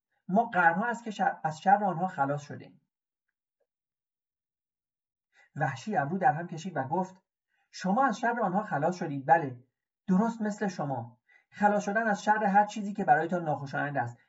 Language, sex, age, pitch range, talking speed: Persian, male, 40-59, 150-215 Hz, 155 wpm